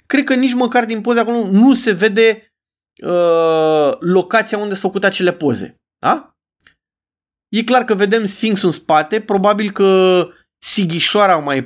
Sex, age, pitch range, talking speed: male, 20-39, 170-220 Hz, 150 wpm